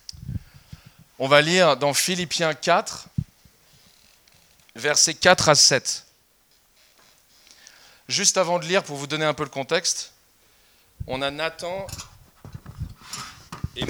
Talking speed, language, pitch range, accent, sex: 110 wpm, French, 125-165 Hz, French, male